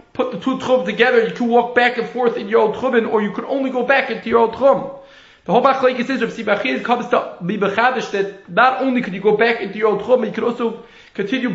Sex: male